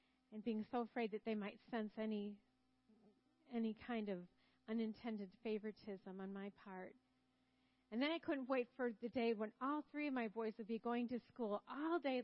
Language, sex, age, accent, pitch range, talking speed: English, female, 40-59, American, 210-255 Hz, 185 wpm